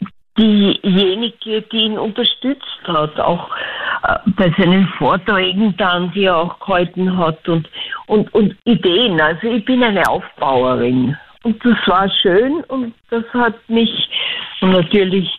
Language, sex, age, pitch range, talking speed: German, female, 50-69, 170-215 Hz, 130 wpm